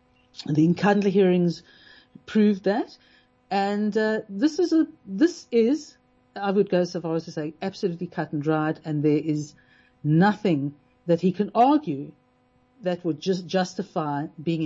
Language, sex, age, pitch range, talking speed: English, female, 50-69, 155-205 Hz, 150 wpm